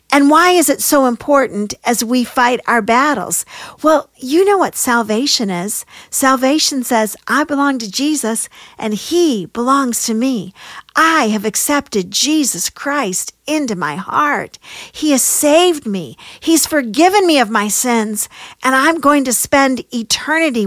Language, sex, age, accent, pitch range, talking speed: English, female, 50-69, American, 220-305 Hz, 150 wpm